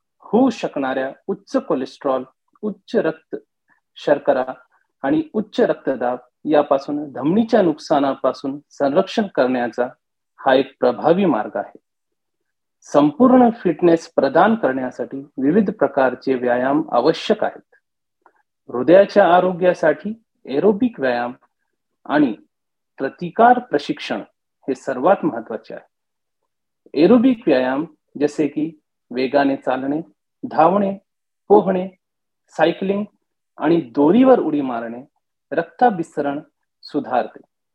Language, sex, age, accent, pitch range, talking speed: English, male, 40-59, Indian, 135-215 Hz, 80 wpm